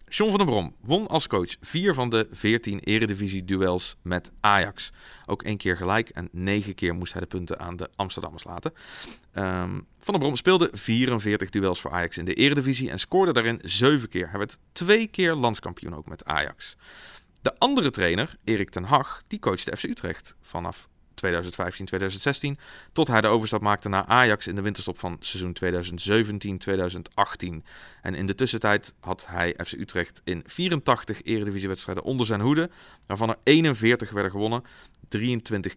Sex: male